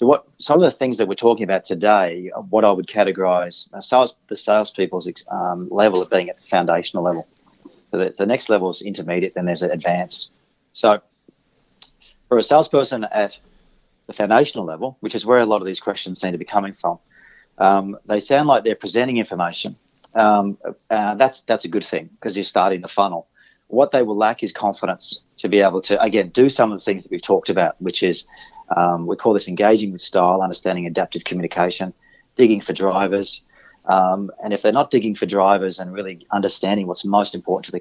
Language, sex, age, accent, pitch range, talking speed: English, male, 40-59, Australian, 95-115 Hz, 205 wpm